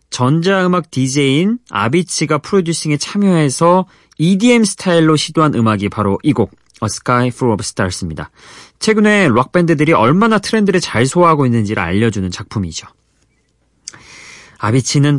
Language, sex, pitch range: Korean, male, 105-165 Hz